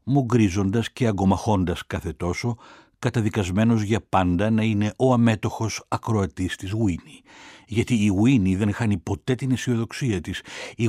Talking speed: 145 wpm